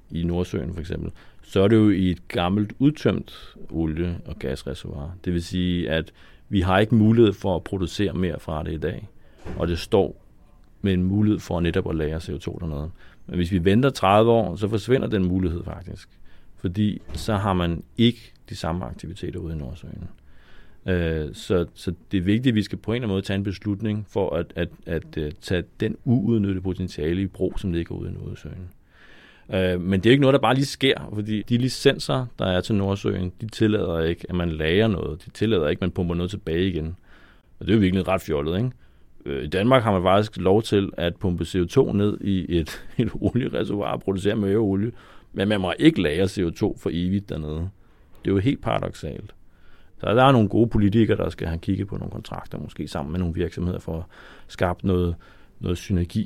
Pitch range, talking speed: 85-105 Hz, 205 wpm